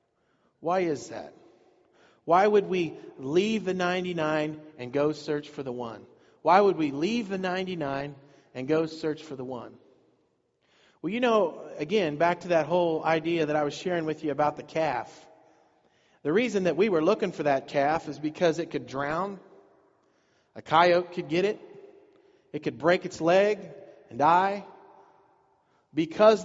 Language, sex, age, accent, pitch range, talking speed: English, male, 40-59, American, 150-195 Hz, 165 wpm